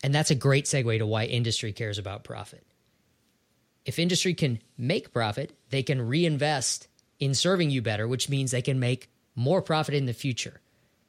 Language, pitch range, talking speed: English, 120-160 Hz, 180 wpm